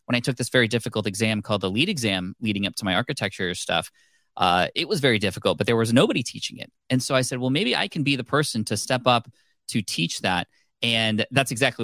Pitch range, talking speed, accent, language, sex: 100-125 Hz, 245 wpm, American, English, male